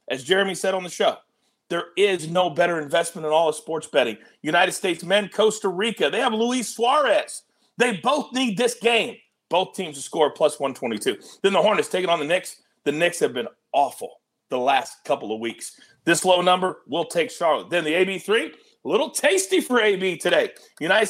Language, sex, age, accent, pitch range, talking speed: English, male, 40-59, American, 165-230 Hz, 195 wpm